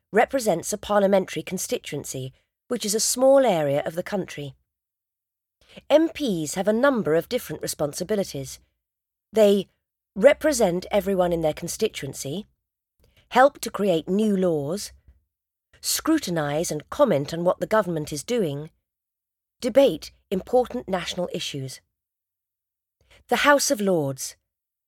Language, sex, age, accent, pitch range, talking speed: English, female, 40-59, British, 145-225 Hz, 115 wpm